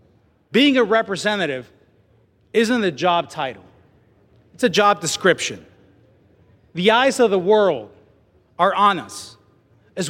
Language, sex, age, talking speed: English, male, 30-49, 120 wpm